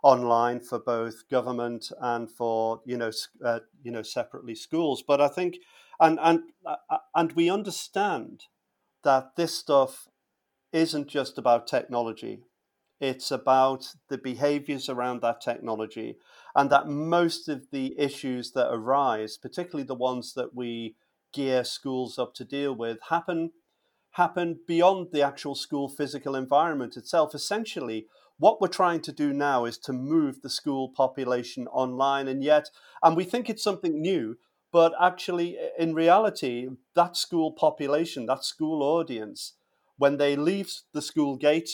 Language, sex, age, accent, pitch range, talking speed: English, male, 40-59, British, 125-165 Hz, 145 wpm